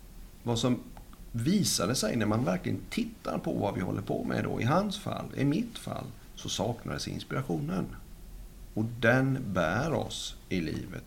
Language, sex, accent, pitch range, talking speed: Swedish, male, native, 90-120 Hz, 170 wpm